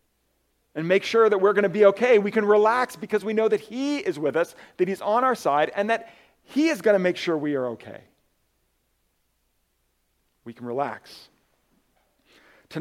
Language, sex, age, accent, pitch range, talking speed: English, male, 40-59, American, 130-180 Hz, 185 wpm